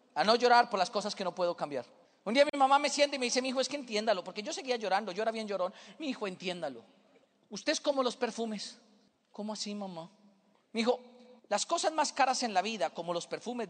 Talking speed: 240 wpm